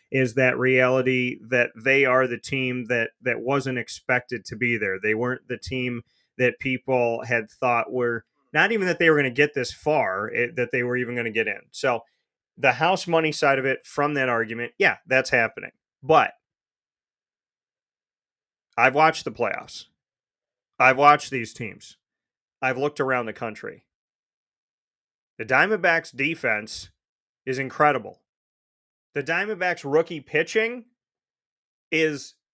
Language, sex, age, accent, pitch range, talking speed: English, male, 30-49, American, 125-165 Hz, 150 wpm